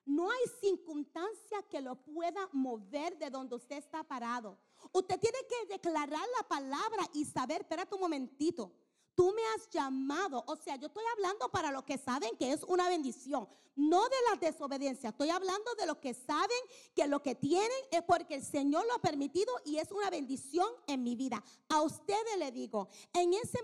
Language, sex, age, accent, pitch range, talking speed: English, female, 40-59, American, 290-395 Hz, 190 wpm